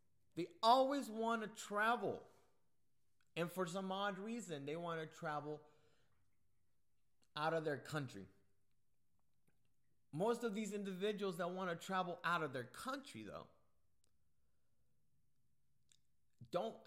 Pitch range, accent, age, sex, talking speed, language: 125-175 Hz, American, 30-49, male, 115 wpm, English